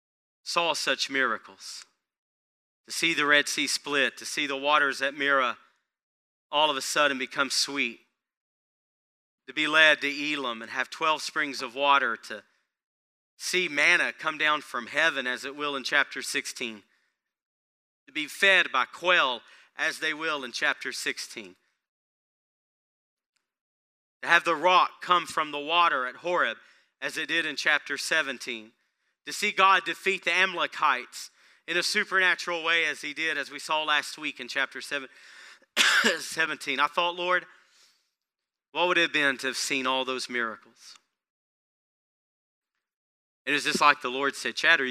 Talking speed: 155 wpm